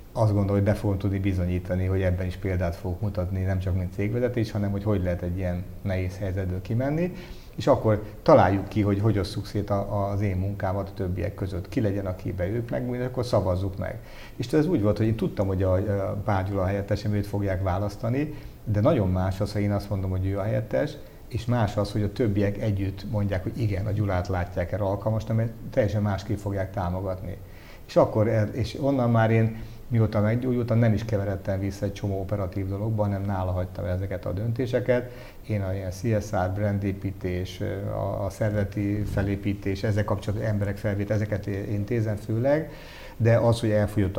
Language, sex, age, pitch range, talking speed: Hungarian, male, 50-69, 95-110 Hz, 185 wpm